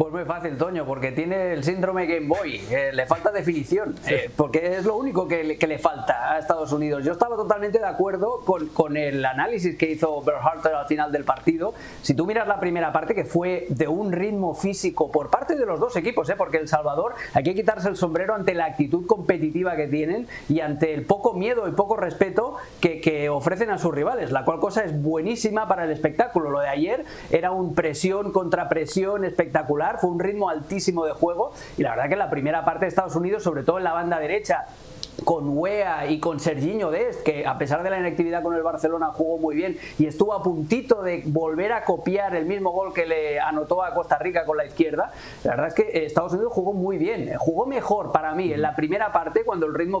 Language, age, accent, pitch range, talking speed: Spanish, 30-49, Spanish, 155-195 Hz, 225 wpm